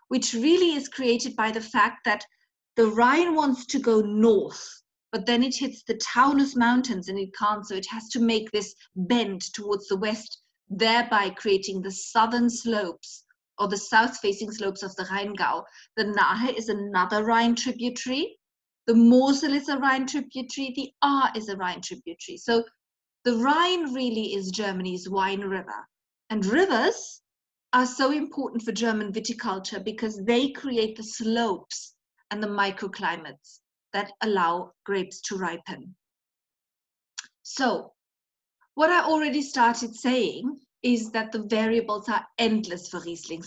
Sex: female